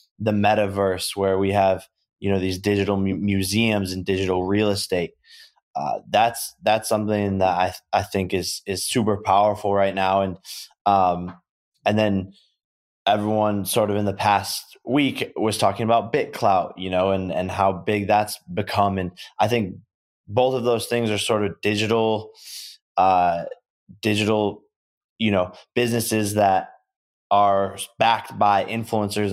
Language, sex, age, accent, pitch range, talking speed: English, male, 20-39, American, 95-105 Hz, 150 wpm